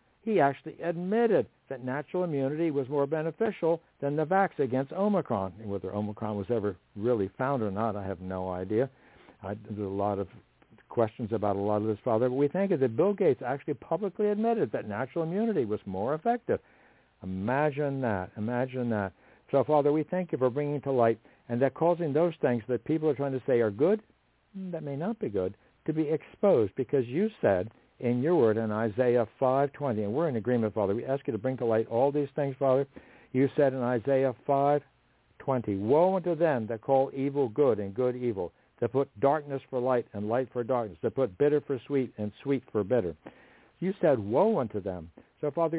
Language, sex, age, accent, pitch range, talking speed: English, male, 60-79, American, 110-145 Hz, 200 wpm